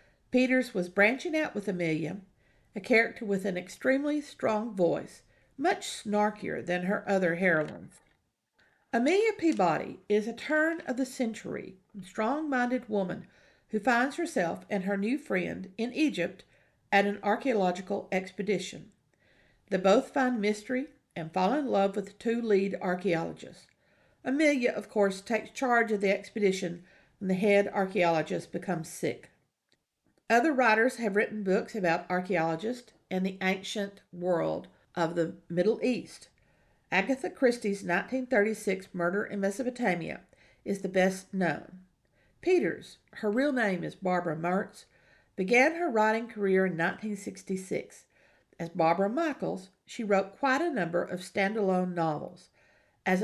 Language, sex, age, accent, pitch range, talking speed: English, female, 50-69, American, 185-245 Hz, 130 wpm